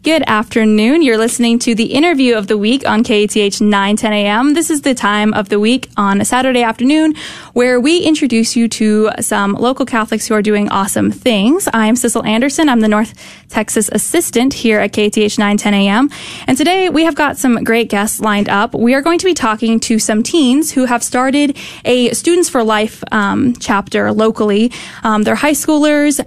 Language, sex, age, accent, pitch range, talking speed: English, female, 20-39, American, 215-270 Hz, 190 wpm